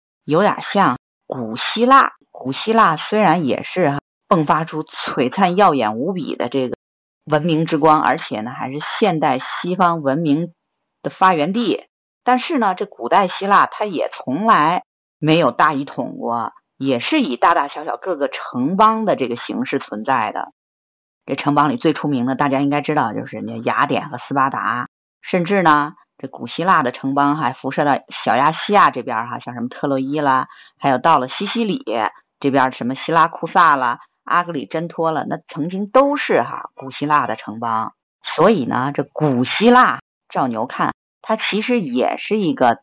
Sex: female